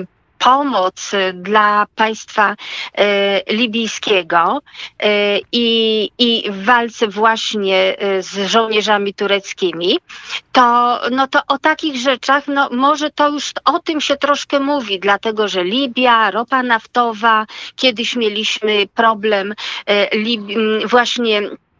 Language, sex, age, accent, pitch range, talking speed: Polish, female, 40-59, native, 205-270 Hz, 100 wpm